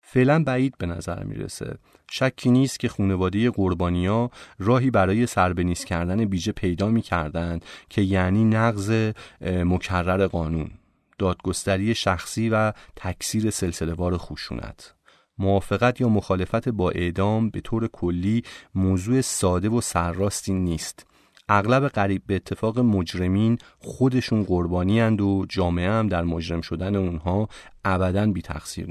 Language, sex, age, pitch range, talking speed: Persian, male, 30-49, 90-110 Hz, 125 wpm